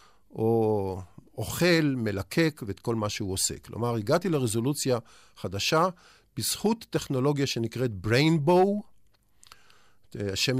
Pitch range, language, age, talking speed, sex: 105-150 Hz, Hebrew, 50-69, 95 wpm, male